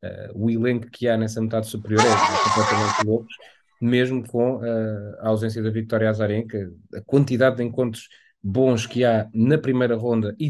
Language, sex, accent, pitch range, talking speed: Portuguese, male, Portuguese, 105-125 Hz, 160 wpm